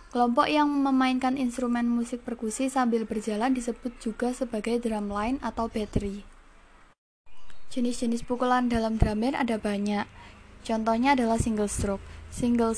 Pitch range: 215-245 Hz